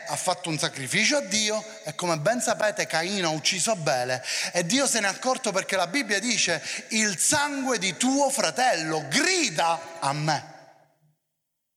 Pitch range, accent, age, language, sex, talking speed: 150-245 Hz, native, 30-49, Italian, male, 165 wpm